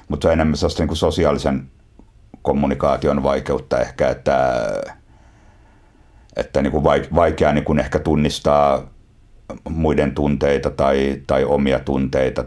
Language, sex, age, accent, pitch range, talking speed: Finnish, male, 60-79, native, 70-85 Hz, 100 wpm